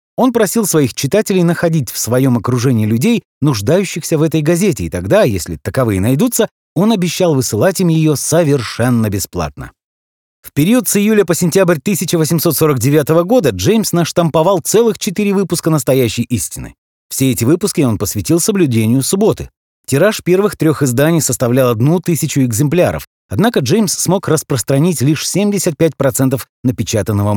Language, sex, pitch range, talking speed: Russian, male, 120-185 Hz, 135 wpm